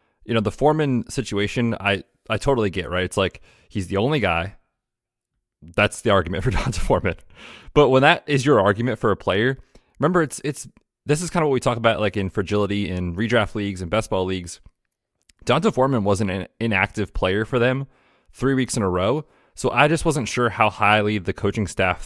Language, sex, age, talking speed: English, male, 20-39, 205 wpm